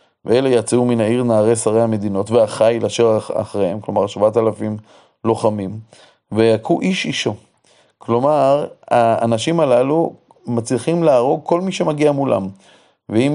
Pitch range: 110-140 Hz